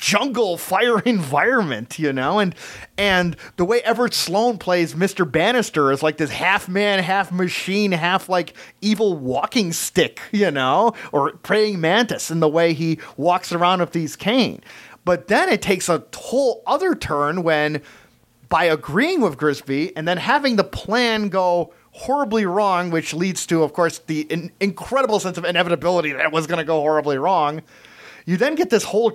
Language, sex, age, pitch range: English, male, 30-49, 160-200 Hz